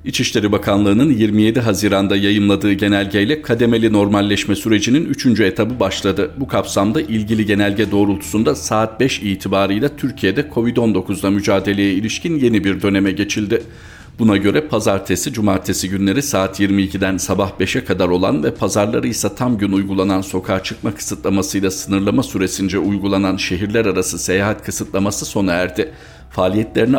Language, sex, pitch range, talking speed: Turkish, male, 95-105 Hz, 130 wpm